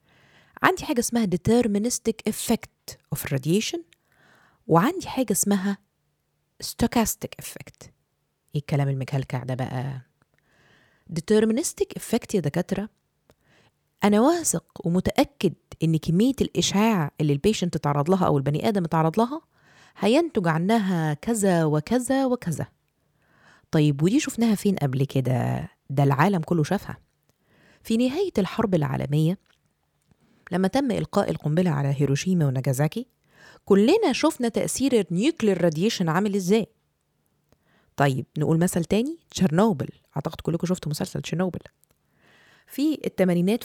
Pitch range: 155-220 Hz